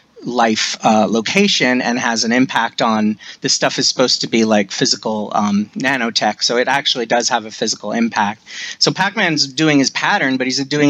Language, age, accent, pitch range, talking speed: English, 30-49, American, 130-165 Hz, 185 wpm